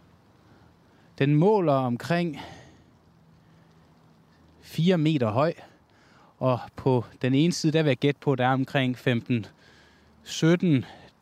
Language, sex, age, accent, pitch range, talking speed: Danish, male, 20-39, native, 115-150 Hz, 105 wpm